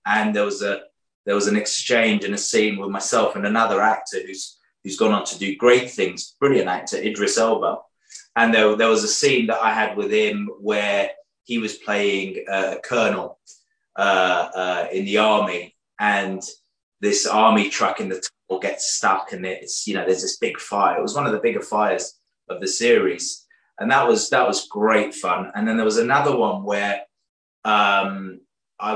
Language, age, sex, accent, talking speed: English, 20-39, male, British, 195 wpm